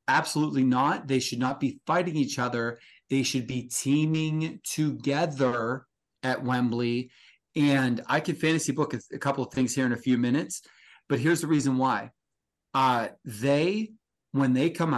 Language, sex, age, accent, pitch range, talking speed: English, male, 30-49, American, 125-155 Hz, 160 wpm